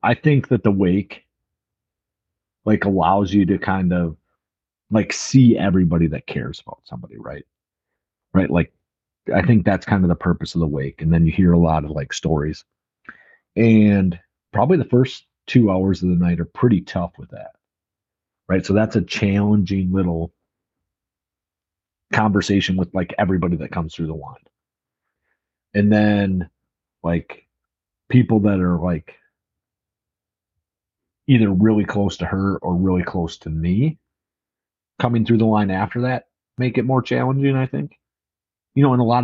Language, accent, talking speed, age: English, American, 160 wpm, 40-59